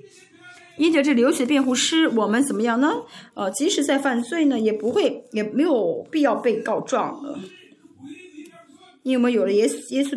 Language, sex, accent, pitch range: Chinese, female, native, 235-325 Hz